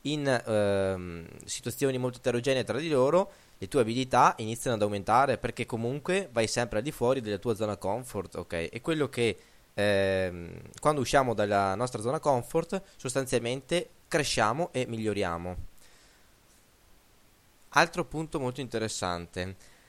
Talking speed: 135 wpm